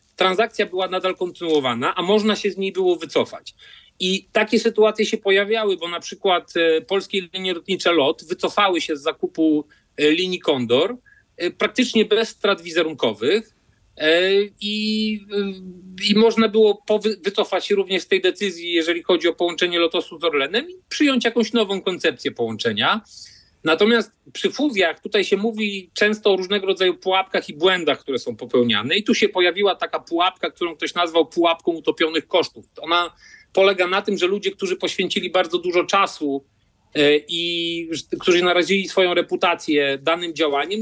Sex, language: male, Polish